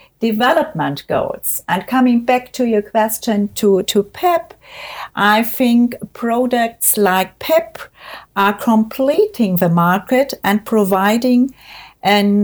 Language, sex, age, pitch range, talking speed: English, female, 50-69, 205-255 Hz, 110 wpm